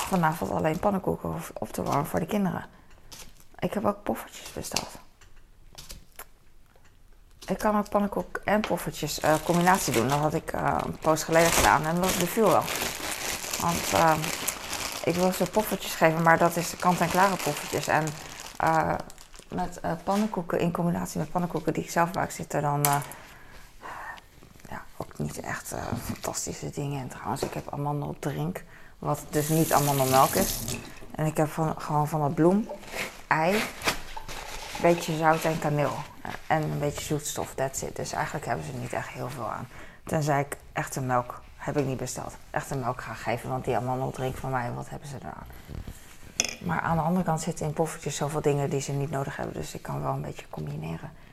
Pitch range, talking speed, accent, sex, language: 140-170 Hz, 185 wpm, Dutch, female, Dutch